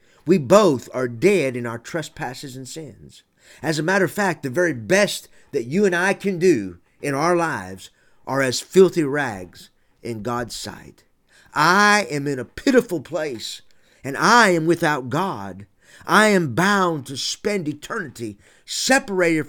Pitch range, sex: 125-190 Hz, male